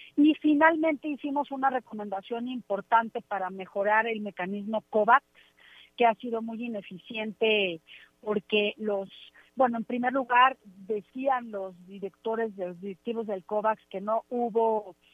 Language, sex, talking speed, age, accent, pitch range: Spanish, female, 130 wpm, 40-59, Mexican, 200-245 Hz